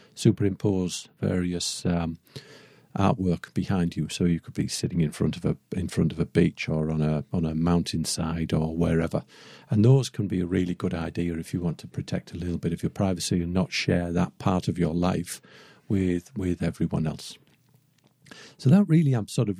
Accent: British